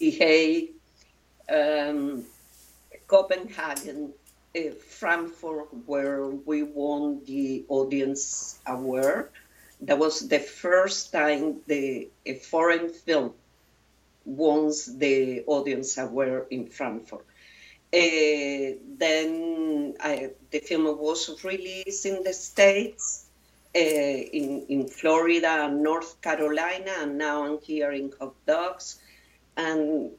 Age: 50-69